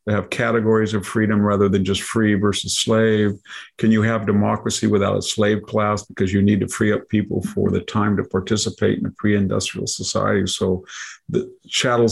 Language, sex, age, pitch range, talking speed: English, male, 50-69, 95-110 Hz, 190 wpm